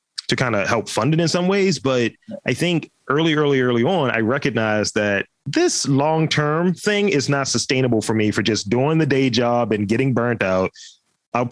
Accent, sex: American, male